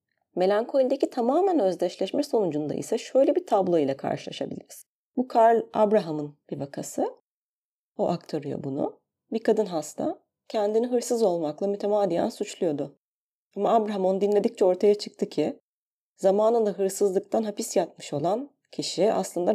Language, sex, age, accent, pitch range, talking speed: Turkish, female, 30-49, native, 165-205 Hz, 125 wpm